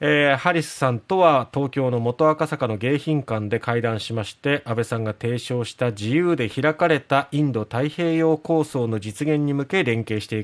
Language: Japanese